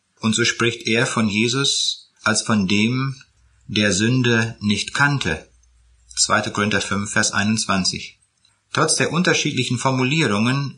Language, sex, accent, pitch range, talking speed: German, male, German, 105-130 Hz, 120 wpm